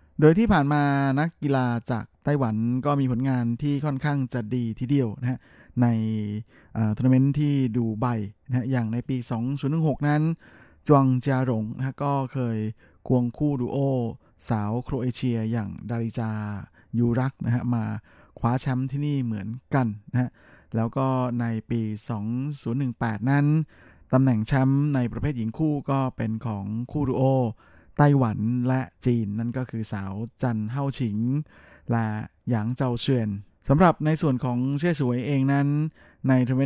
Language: Thai